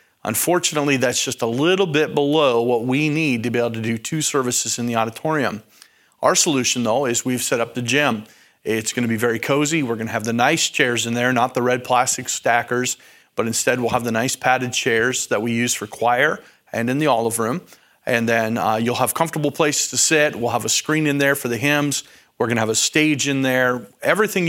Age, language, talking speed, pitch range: 40-59, English, 230 wpm, 120-150 Hz